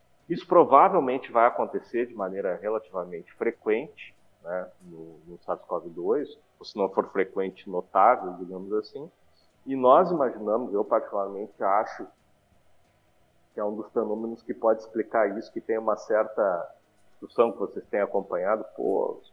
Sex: male